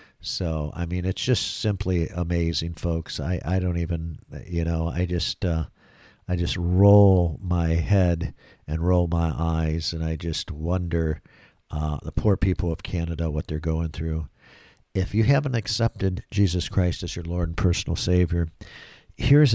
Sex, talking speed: male, 165 wpm